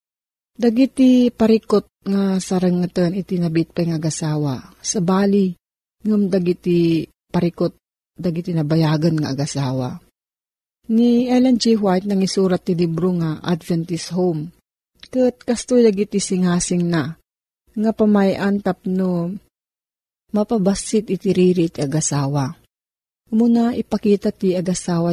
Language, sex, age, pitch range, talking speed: Filipino, female, 40-59, 165-215 Hz, 110 wpm